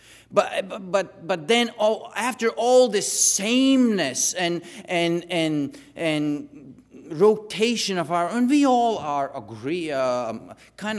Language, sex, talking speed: English, male, 125 wpm